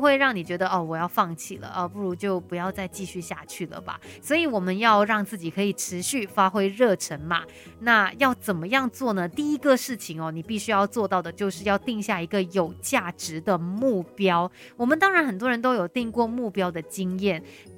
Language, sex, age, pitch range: Chinese, female, 30-49, 185-250 Hz